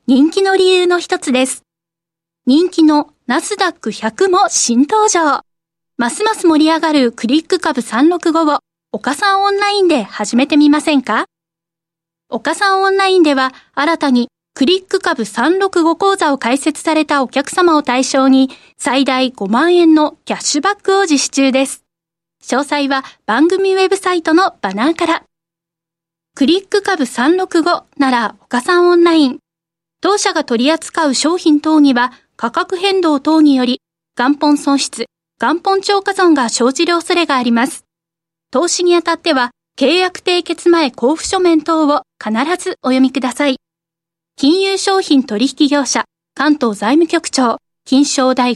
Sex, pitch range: female, 240-345 Hz